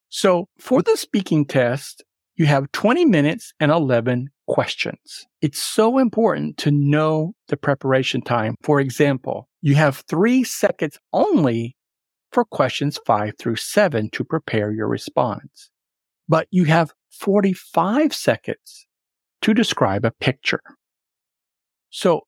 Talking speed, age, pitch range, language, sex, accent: 125 wpm, 50-69, 130-185 Hz, English, male, American